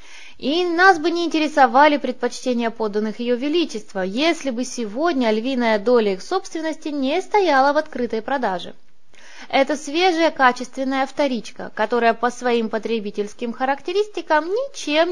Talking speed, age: 125 wpm, 20-39